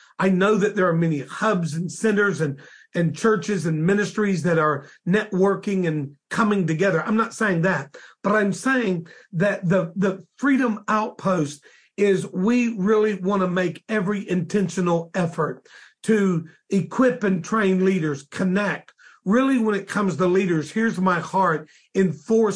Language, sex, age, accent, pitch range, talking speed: English, male, 50-69, American, 175-215 Hz, 155 wpm